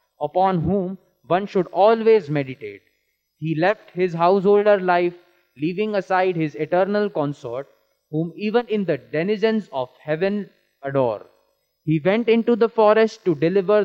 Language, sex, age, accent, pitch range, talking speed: English, male, 20-39, Indian, 150-205 Hz, 135 wpm